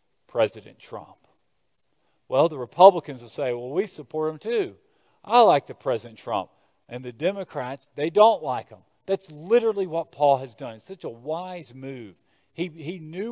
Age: 40-59